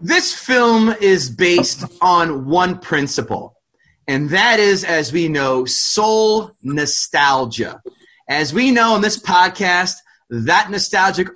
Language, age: English, 30-49